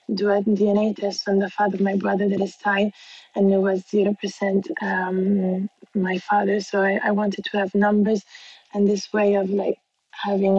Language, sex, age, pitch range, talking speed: English, female, 20-39, 195-210 Hz, 195 wpm